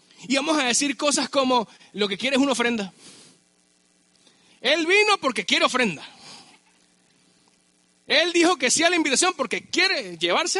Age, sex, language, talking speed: 40-59, male, Spanish, 155 wpm